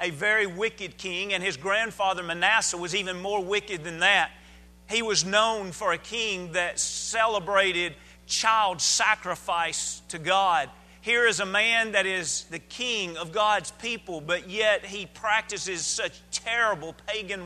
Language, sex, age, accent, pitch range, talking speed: English, male, 40-59, American, 175-220 Hz, 150 wpm